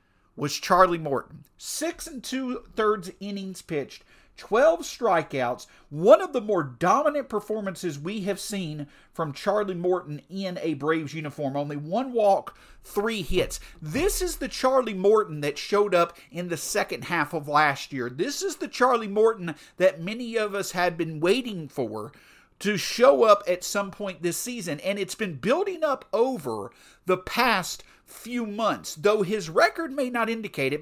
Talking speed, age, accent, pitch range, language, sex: 165 wpm, 50-69, American, 160-220 Hz, English, male